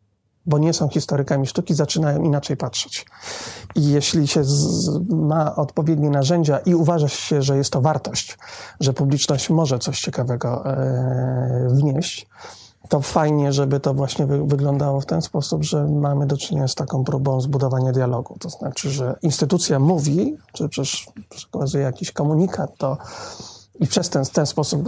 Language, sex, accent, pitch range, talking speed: Polish, male, native, 135-160 Hz, 150 wpm